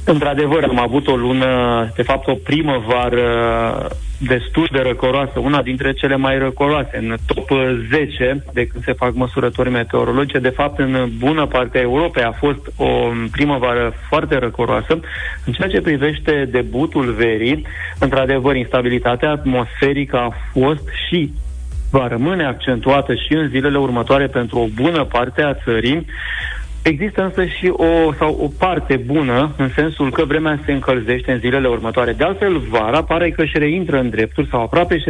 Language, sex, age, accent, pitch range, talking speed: Romanian, male, 30-49, native, 125-145 Hz, 160 wpm